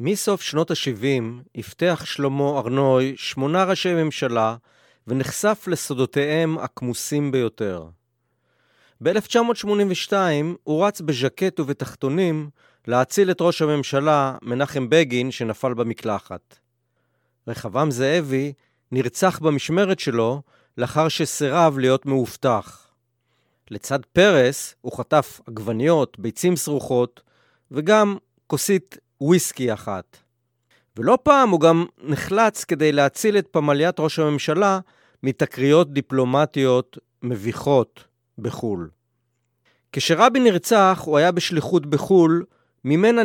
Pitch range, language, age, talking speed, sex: 125-170 Hz, Hebrew, 30-49, 95 wpm, male